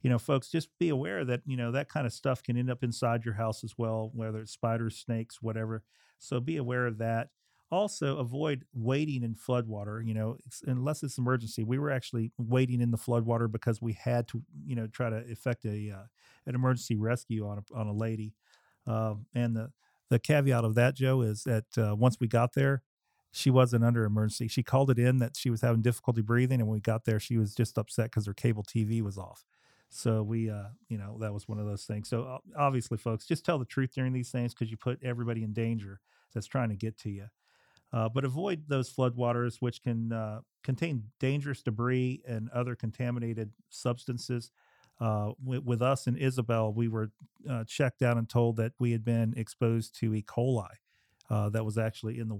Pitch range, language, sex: 110-125 Hz, English, male